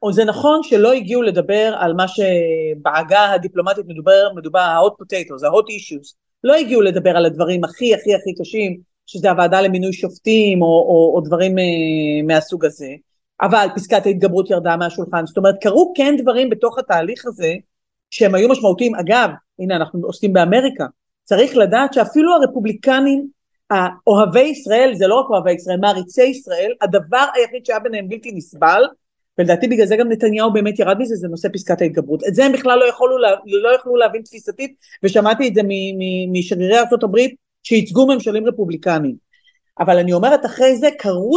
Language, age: Hebrew, 40-59